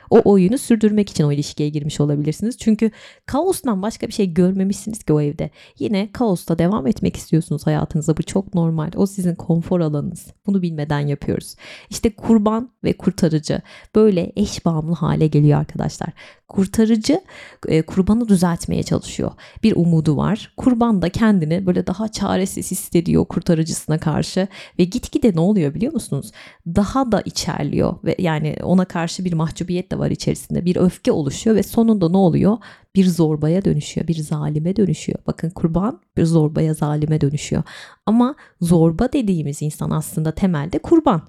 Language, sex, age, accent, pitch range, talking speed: Turkish, female, 30-49, native, 160-205 Hz, 150 wpm